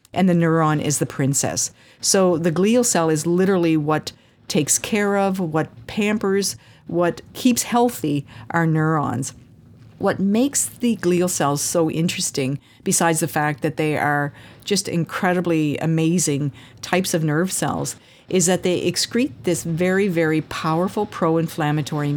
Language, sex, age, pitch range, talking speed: English, female, 50-69, 145-180 Hz, 140 wpm